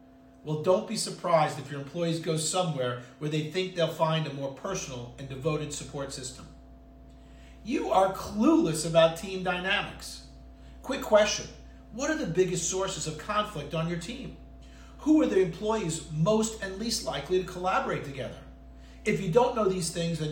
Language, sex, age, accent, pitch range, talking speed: English, male, 40-59, American, 140-190 Hz, 170 wpm